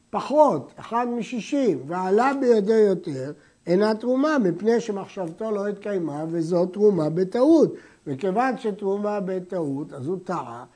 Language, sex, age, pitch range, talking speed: Hebrew, male, 60-79, 185-250 Hz, 115 wpm